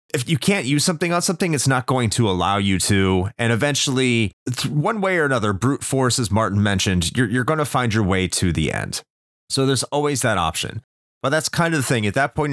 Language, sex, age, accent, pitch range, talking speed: English, male, 30-49, American, 95-130 Hz, 235 wpm